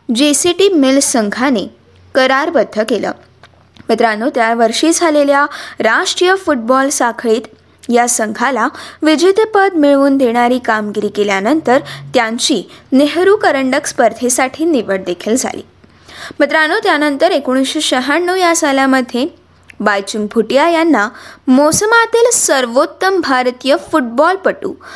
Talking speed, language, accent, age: 95 wpm, Marathi, native, 20-39